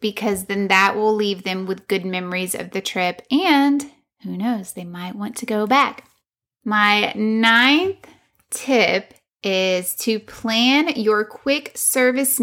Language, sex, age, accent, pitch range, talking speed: English, female, 20-39, American, 200-245 Hz, 145 wpm